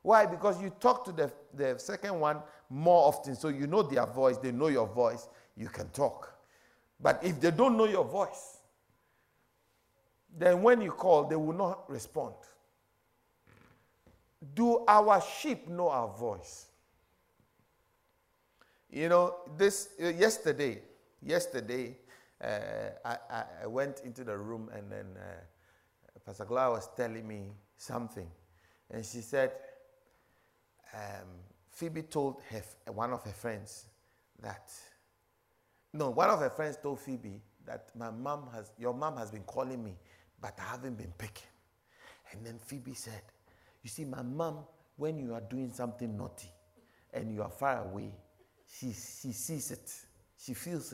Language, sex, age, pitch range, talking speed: English, male, 50-69, 110-165 Hz, 150 wpm